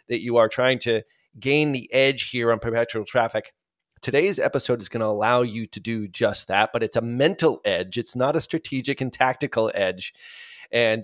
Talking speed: 190 wpm